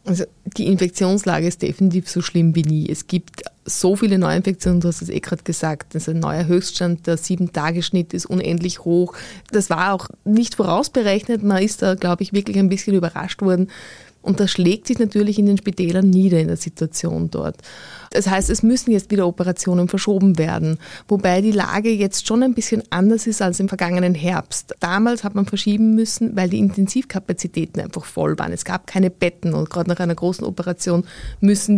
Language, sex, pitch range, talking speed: German, female, 170-200 Hz, 195 wpm